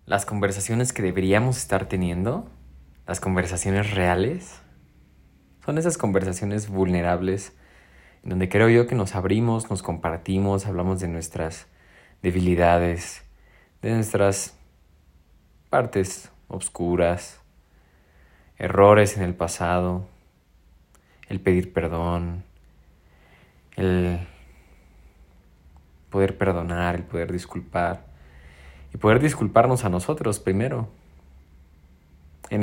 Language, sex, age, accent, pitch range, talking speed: Spanish, male, 20-39, Mexican, 80-105 Hz, 90 wpm